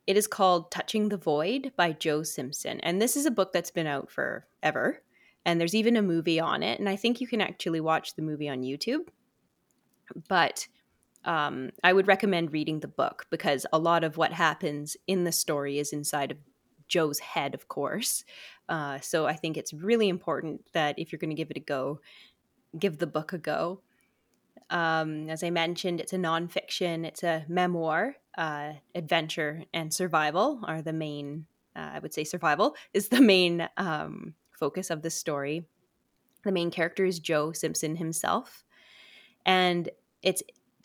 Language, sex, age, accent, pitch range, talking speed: English, female, 20-39, American, 155-190 Hz, 180 wpm